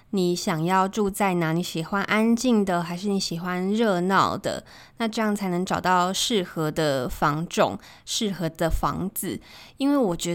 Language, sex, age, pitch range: Chinese, female, 20-39, 185-235 Hz